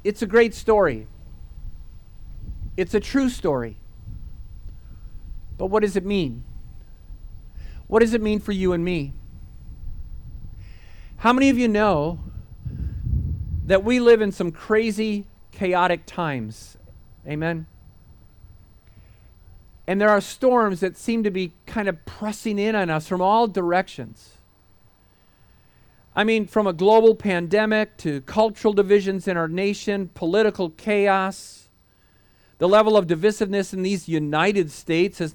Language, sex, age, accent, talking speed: English, male, 50-69, American, 125 wpm